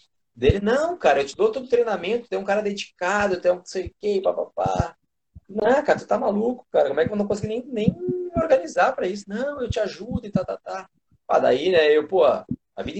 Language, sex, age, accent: Portuguese, male, 30-49, Brazilian